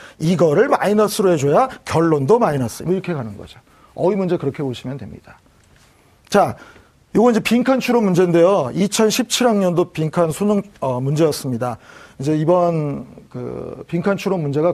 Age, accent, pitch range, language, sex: 40-59, native, 155-225 Hz, Korean, male